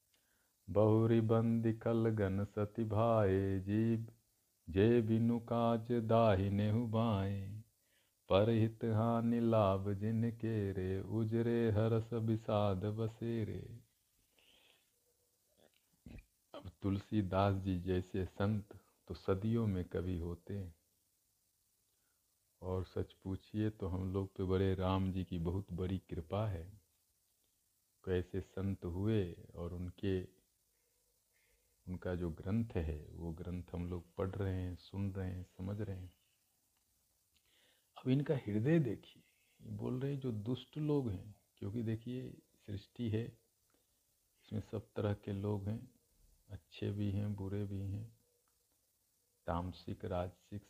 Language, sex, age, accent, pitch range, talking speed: Hindi, male, 50-69, native, 95-115 Hz, 110 wpm